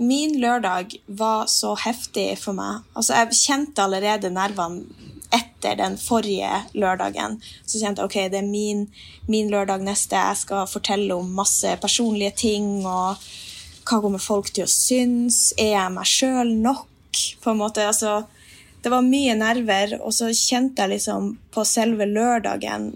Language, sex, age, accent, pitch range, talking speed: English, female, 20-39, Norwegian, 195-230 Hz, 145 wpm